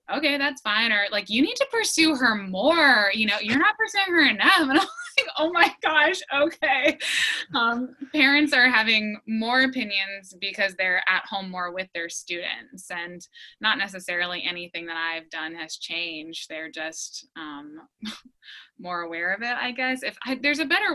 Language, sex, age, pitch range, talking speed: English, female, 20-39, 180-250 Hz, 175 wpm